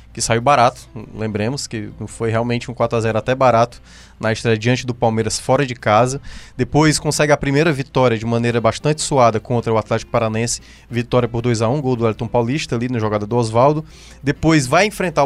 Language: Portuguese